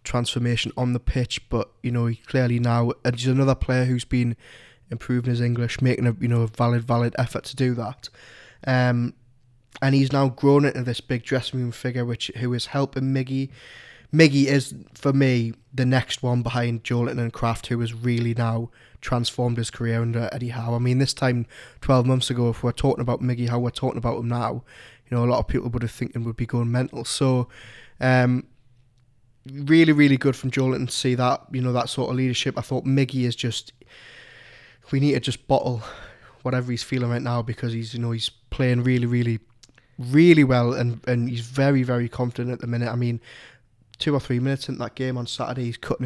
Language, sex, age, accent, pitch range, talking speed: English, male, 20-39, British, 120-130 Hz, 210 wpm